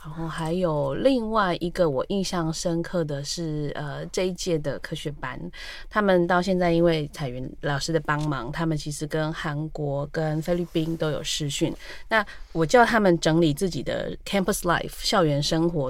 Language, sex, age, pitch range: Chinese, female, 20-39, 150-185 Hz